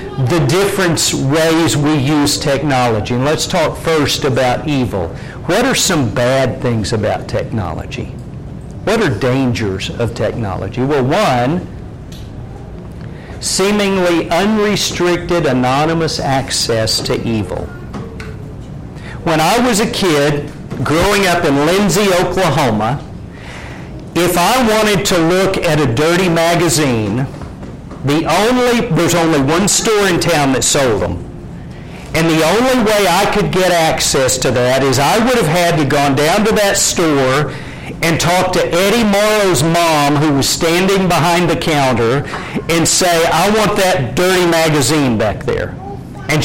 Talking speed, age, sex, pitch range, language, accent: 135 wpm, 50-69, male, 140-190 Hz, English, American